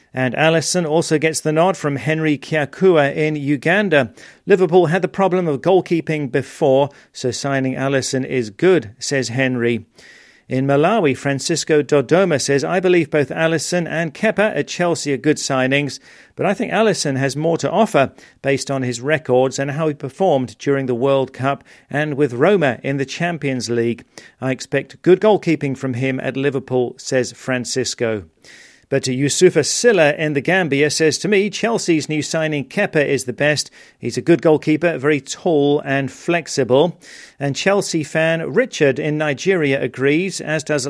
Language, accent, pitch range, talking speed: English, British, 130-160 Hz, 165 wpm